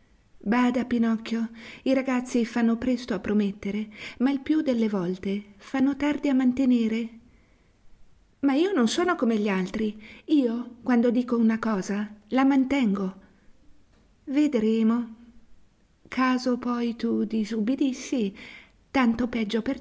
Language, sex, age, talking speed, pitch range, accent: Italian, female, 50-69, 120 wpm, 190-250 Hz, native